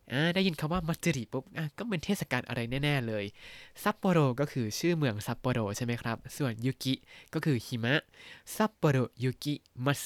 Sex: male